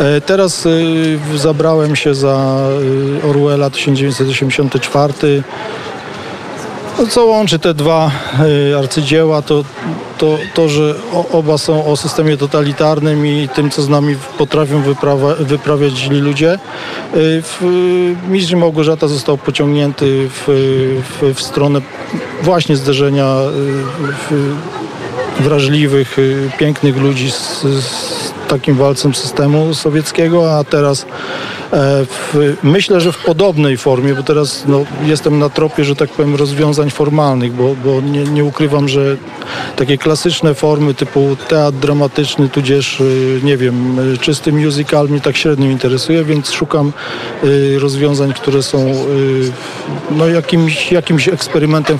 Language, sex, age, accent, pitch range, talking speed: Polish, male, 40-59, native, 140-155 Hz, 110 wpm